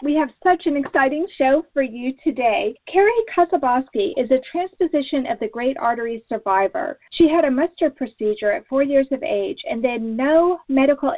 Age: 40-59